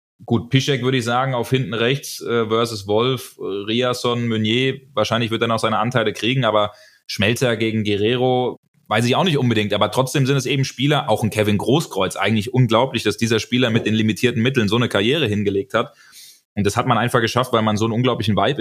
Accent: German